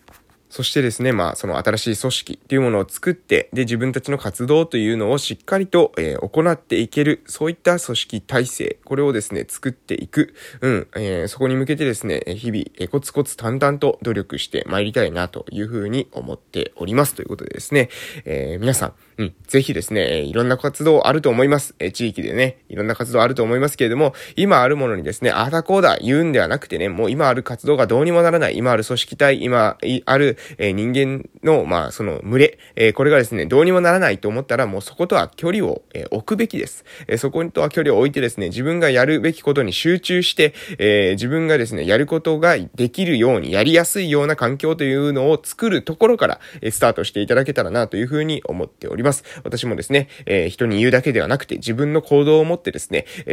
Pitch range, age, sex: 115-155 Hz, 20-39, male